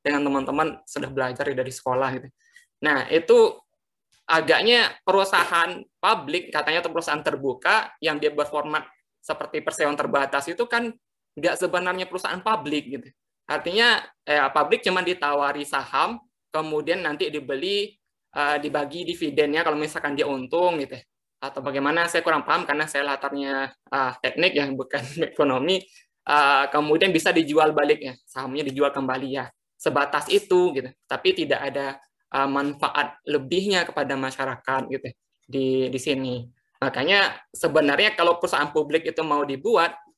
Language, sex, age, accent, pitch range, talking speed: Indonesian, male, 20-39, native, 140-170 Hz, 140 wpm